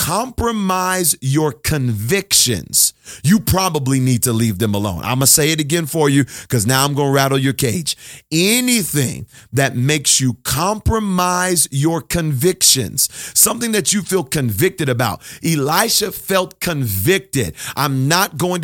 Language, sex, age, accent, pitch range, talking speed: English, male, 40-59, American, 135-185 Hz, 140 wpm